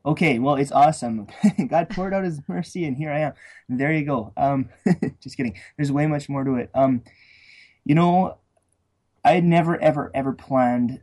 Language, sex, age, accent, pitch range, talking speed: English, male, 20-39, American, 120-150 Hz, 185 wpm